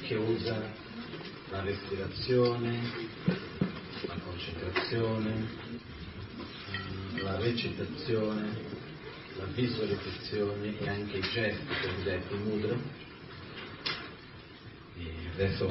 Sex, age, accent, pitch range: male, 40-59, native, 95-115 Hz